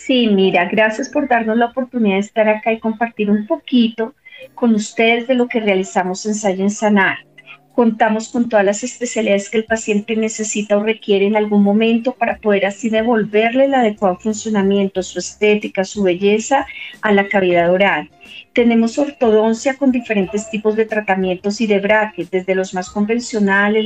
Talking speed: 165 wpm